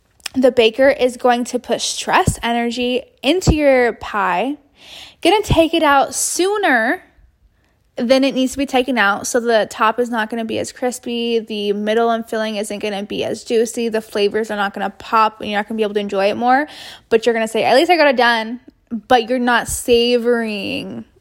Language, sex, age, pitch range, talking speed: English, female, 10-29, 220-265 Hz, 220 wpm